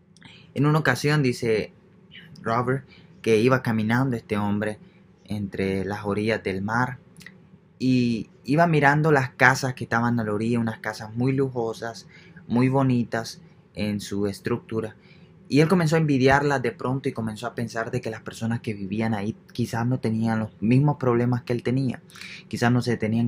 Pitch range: 110-145 Hz